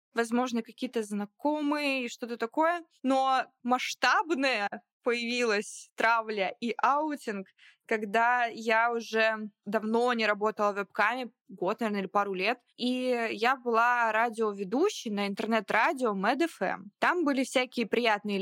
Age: 20-39